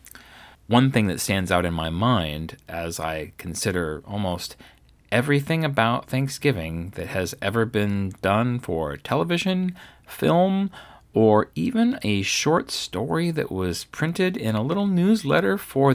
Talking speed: 135 wpm